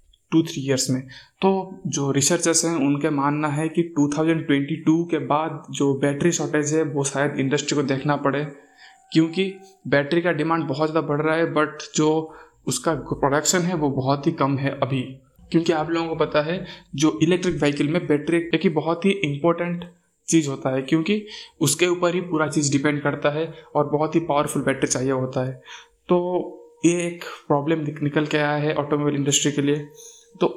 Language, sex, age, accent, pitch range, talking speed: Hindi, male, 20-39, native, 145-165 Hz, 185 wpm